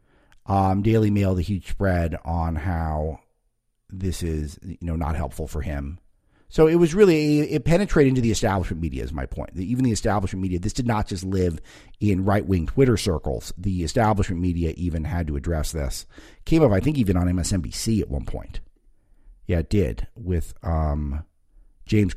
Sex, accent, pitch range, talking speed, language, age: male, American, 80-110 Hz, 180 wpm, English, 50-69